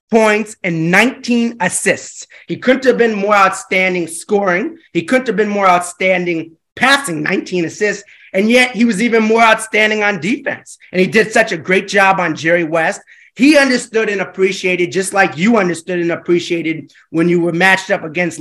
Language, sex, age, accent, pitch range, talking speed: English, male, 30-49, American, 165-205 Hz, 180 wpm